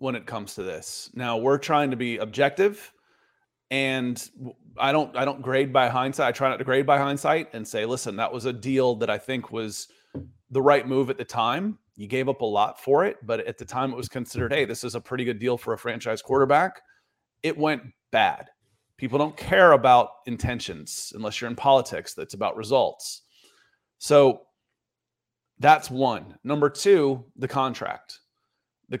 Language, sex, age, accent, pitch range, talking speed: English, male, 30-49, American, 120-140 Hz, 190 wpm